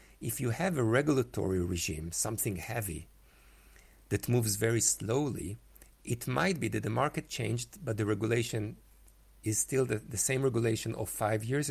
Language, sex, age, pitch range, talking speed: English, male, 50-69, 95-120 Hz, 160 wpm